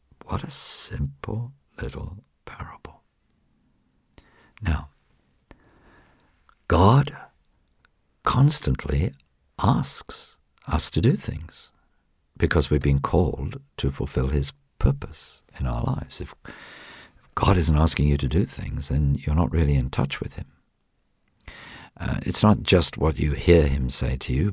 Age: 50-69